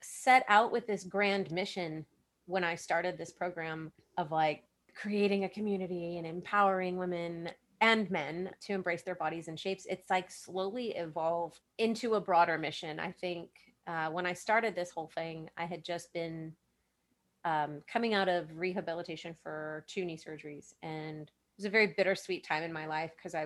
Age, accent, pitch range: 30-49, American, 160-195 Hz